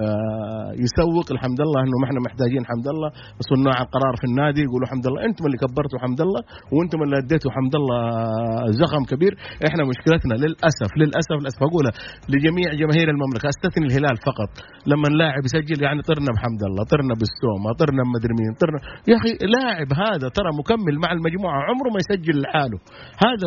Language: English